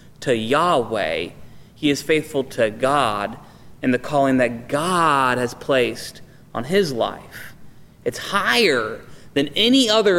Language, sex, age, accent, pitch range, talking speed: English, male, 30-49, American, 125-160 Hz, 130 wpm